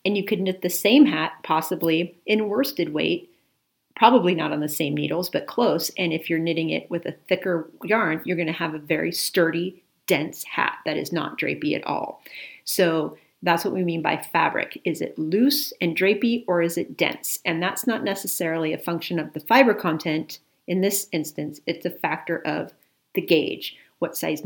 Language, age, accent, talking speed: English, 40-59, American, 195 wpm